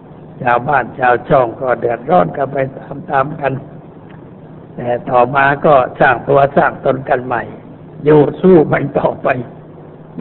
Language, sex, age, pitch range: Thai, male, 60-79, 125-160 Hz